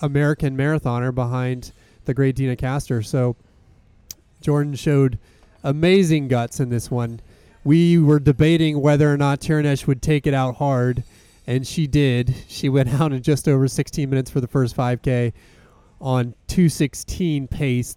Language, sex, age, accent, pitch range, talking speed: English, male, 30-49, American, 125-150 Hz, 150 wpm